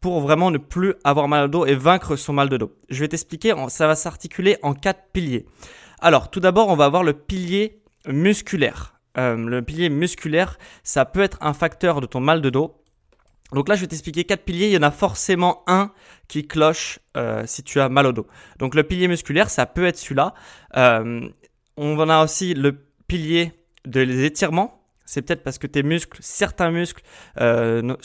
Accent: French